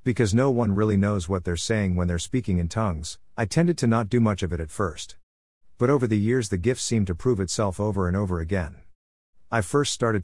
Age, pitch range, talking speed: 50-69, 90-115 Hz, 235 wpm